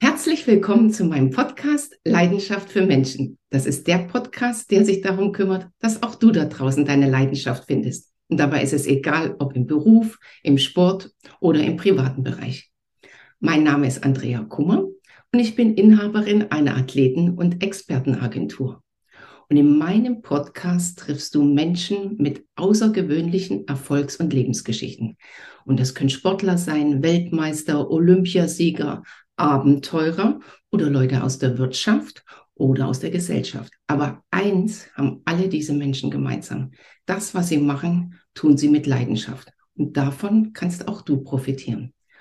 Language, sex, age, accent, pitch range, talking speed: German, female, 60-79, German, 140-195 Hz, 145 wpm